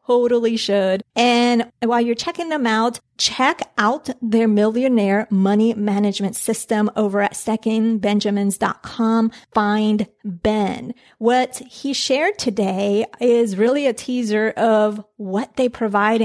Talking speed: 120 wpm